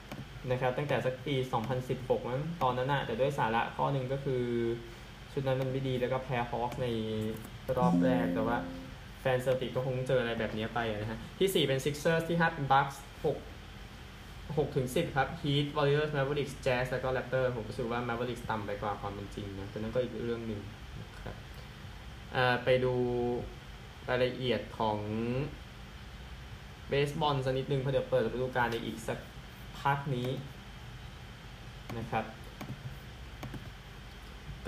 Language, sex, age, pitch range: Thai, male, 20-39, 115-140 Hz